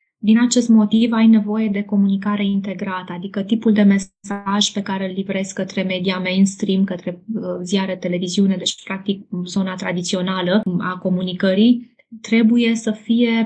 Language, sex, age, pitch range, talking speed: Romanian, female, 20-39, 185-215 Hz, 145 wpm